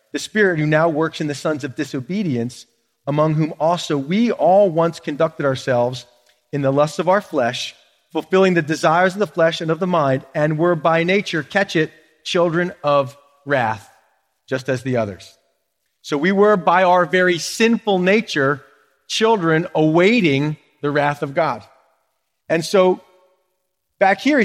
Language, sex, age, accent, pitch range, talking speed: English, male, 40-59, American, 155-235 Hz, 160 wpm